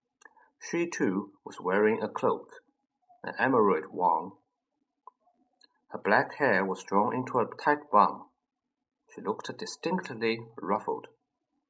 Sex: male